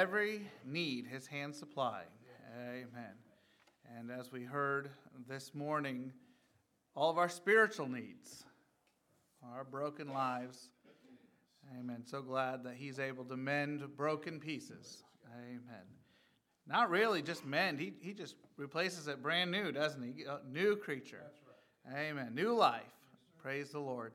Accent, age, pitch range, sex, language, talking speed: American, 40-59, 130-170 Hz, male, English, 130 wpm